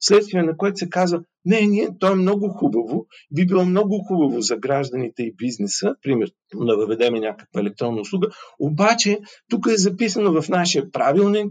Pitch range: 120-200 Hz